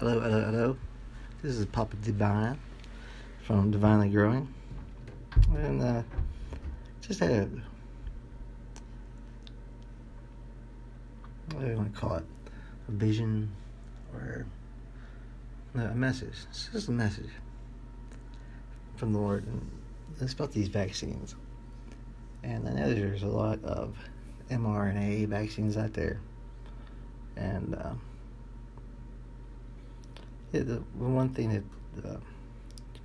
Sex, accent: male, American